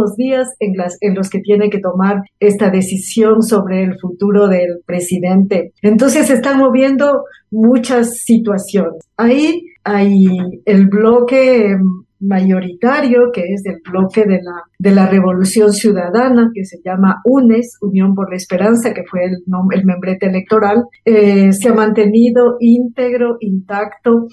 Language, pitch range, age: Spanish, 190-230 Hz, 50-69